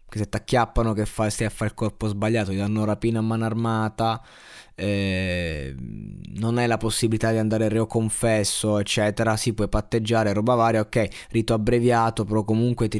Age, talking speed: 20-39, 175 wpm